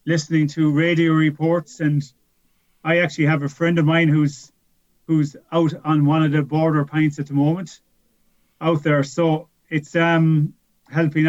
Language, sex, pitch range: English, male, 145-170 Hz